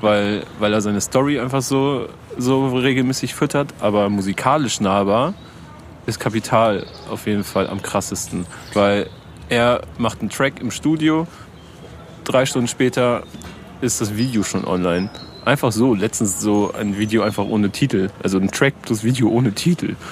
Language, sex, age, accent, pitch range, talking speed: German, male, 30-49, German, 100-125 Hz, 150 wpm